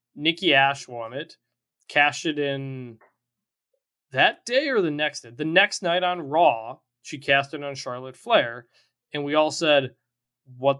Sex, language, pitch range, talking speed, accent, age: male, English, 145-220 Hz, 155 wpm, American, 20-39